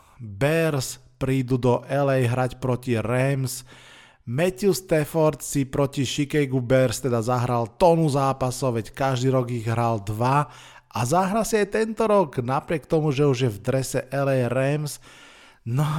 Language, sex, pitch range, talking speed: Slovak, male, 125-150 Hz, 145 wpm